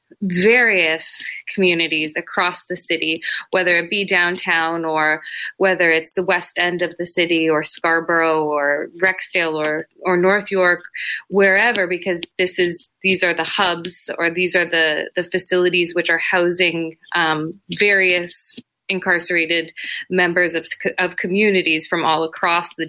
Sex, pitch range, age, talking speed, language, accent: female, 165-190 Hz, 20-39, 140 wpm, English, American